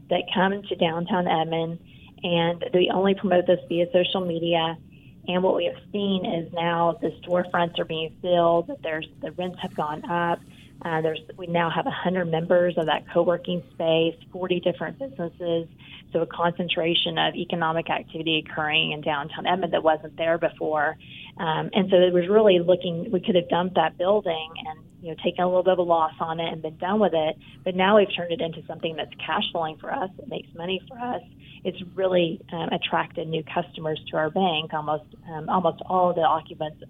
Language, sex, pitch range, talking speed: English, female, 155-180 Hz, 200 wpm